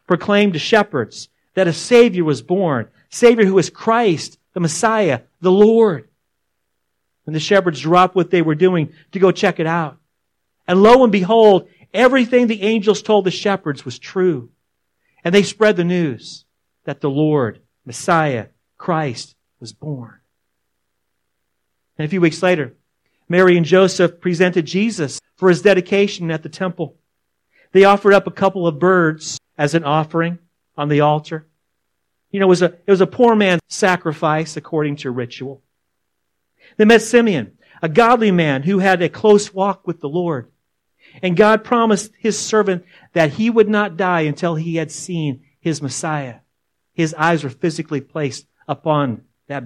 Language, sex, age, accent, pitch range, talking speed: English, male, 40-59, American, 135-190 Hz, 160 wpm